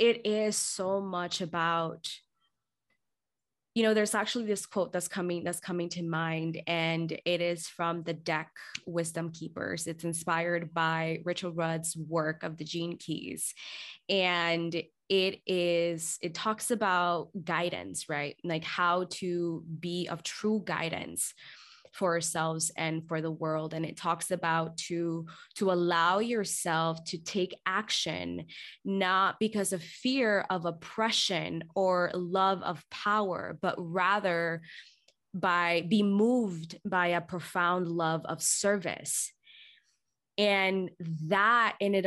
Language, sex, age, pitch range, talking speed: English, female, 20-39, 165-195 Hz, 135 wpm